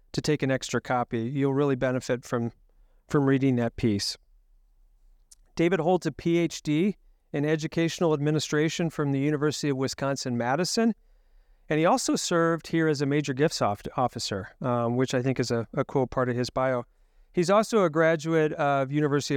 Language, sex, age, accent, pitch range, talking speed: English, male, 40-59, American, 125-160 Hz, 165 wpm